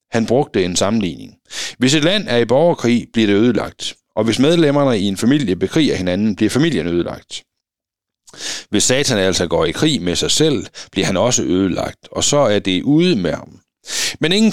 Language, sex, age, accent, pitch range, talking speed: Danish, male, 60-79, native, 100-150 Hz, 180 wpm